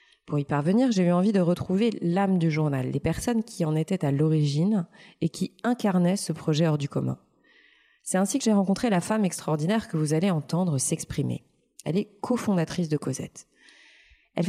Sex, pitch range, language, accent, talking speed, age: female, 155-210 Hz, French, French, 185 wpm, 20-39